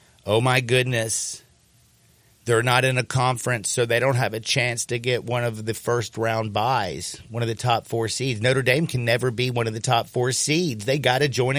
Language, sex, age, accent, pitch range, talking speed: English, male, 50-69, American, 105-130 Hz, 225 wpm